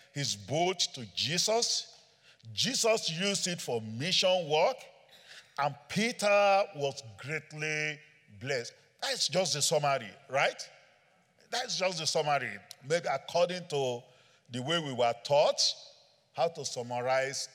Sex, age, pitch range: male, 50-69, 140-190 Hz